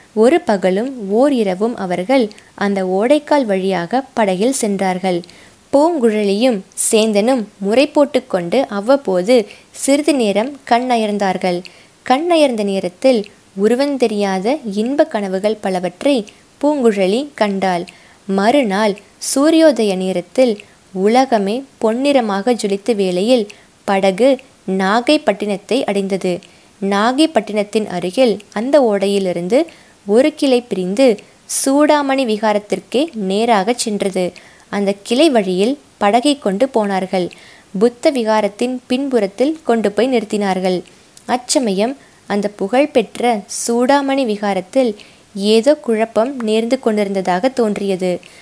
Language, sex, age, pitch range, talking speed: Tamil, female, 20-39, 195-255 Hz, 90 wpm